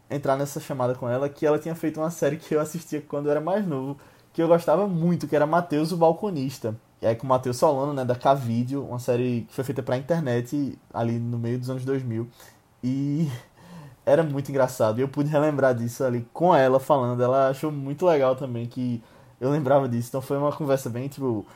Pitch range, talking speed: 120-145 Hz, 215 wpm